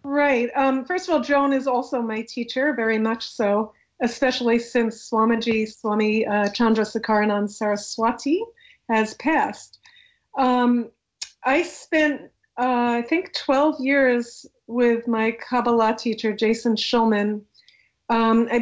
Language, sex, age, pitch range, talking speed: English, female, 40-59, 220-265 Hz, 125 wpm